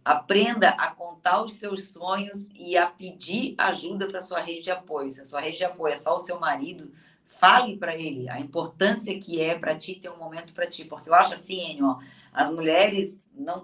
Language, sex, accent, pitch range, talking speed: Portuguese, female, Brazilian, 170-210 Hz, 215 wpm